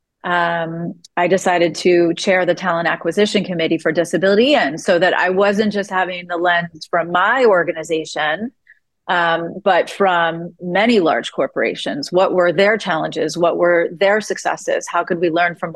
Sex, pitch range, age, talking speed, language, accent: female, 170-195 Hz, 30-49, 160 wpm, English, American